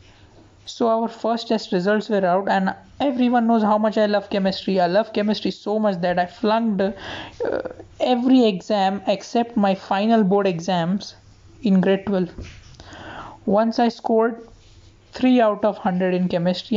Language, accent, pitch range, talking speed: English, Indian, 190-235 Hz, 155 wpm